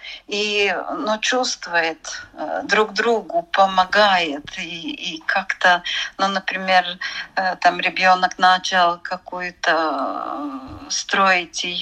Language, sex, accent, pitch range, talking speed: Russian, female, native, 175-200 Hz, 85 wpm